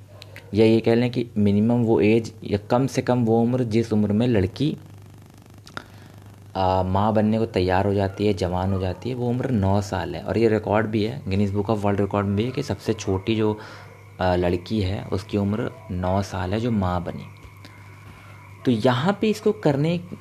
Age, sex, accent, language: 30-49, male, native, Hindi